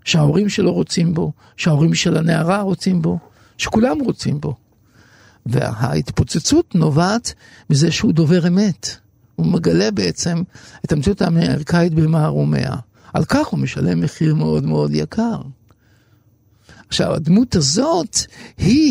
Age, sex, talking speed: 50-69, male, 115 wpm